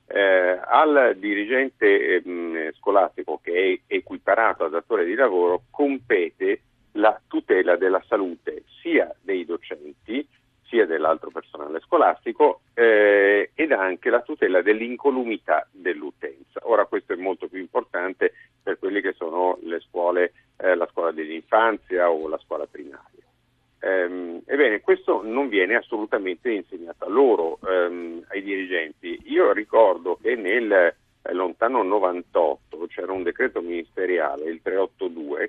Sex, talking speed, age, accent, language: male, 130 wpm, 50-69, native, Italian